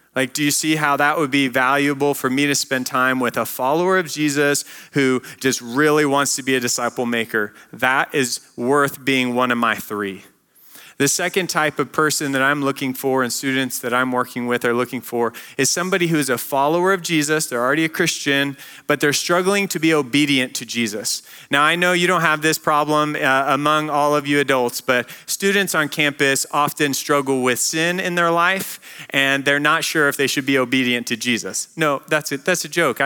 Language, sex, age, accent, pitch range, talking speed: English, male, 30-49, American, 125-155 Hz, 210 wpm